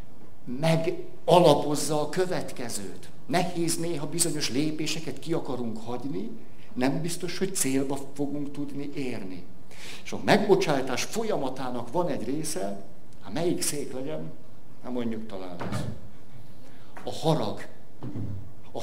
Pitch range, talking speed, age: 115-165 Hz, 115 wpm, 60-79